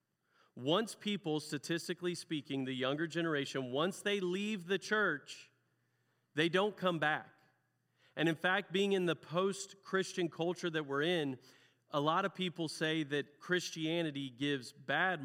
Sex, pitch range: male, 140-180 Hz